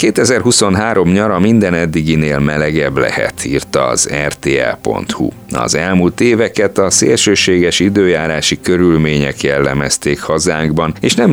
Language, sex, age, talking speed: Hungarian, male, 30-49, 105 wpm